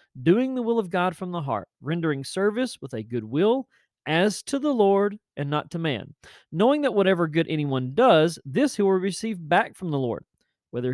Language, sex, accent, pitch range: English, male, American, 145-195 Hz